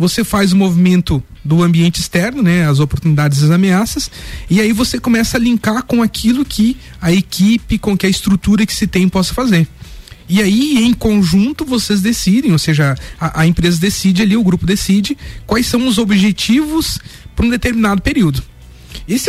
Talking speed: 180 wpm